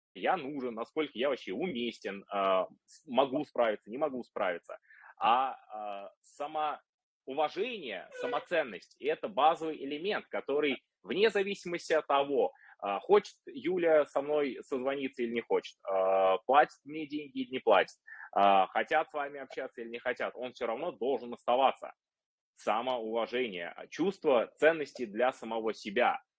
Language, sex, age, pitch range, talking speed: Russian, male, 20-39, 120-155 Hz, 125 wpm